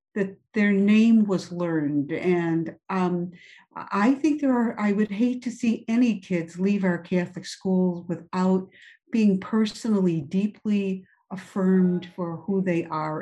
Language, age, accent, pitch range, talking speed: English, 60-79, American, 175-220 Hz, 140 wpm